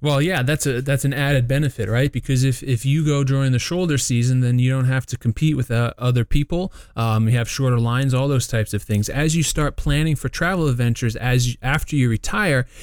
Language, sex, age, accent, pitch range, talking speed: English, male, 30-49, American, 115-140 Hz, 235 wpm